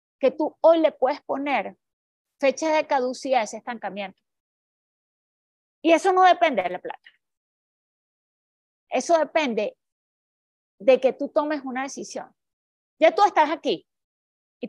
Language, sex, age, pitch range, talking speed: Spanish, female, 30-49, 260-330 Hz, 130 wpm